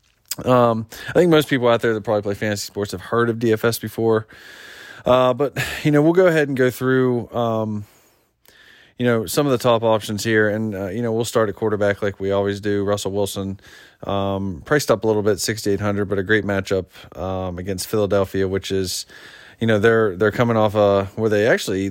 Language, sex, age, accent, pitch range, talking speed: English, male, 20-39, American, 95-115 Hz, 210 wpm